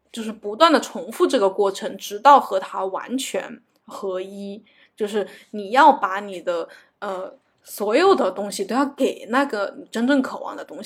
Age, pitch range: 10-29, 195-270 Hz